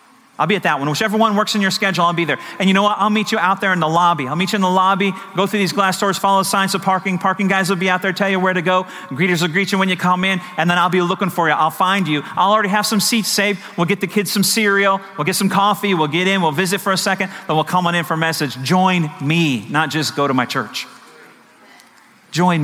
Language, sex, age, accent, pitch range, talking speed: English, male, 40-59, American, 175-215 Hz, 295 wpm